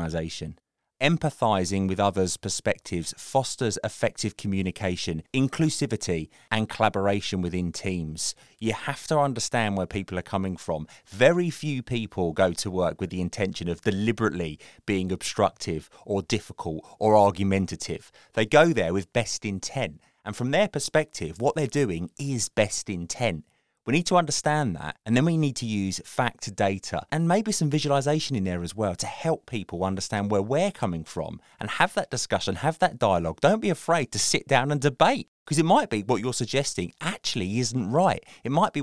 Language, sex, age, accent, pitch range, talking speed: English, male, 30-49, British, 95-135 Hz, 175 wpm